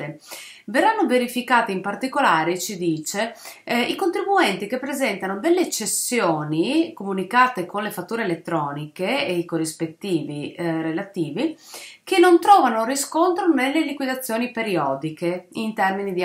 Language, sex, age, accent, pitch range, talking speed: Italian, female, 30-49, native, 185-300 Hz, 120 wpm